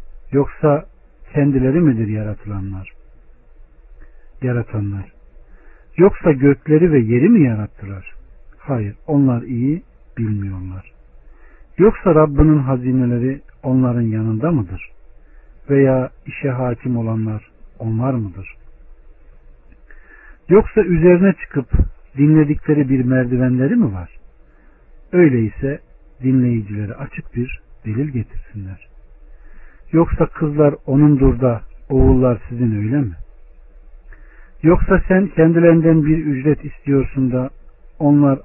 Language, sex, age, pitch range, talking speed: Turkish, male, 60-79, 105-145 Hz, 90 wpm